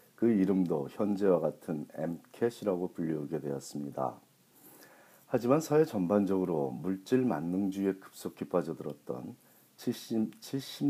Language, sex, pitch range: Korean, male, 75-105 Hz